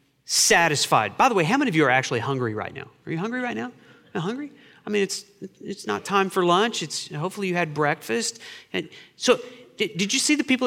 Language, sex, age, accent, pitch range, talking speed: English, male, 40-59, American, 150-205 Hz, 230 wpm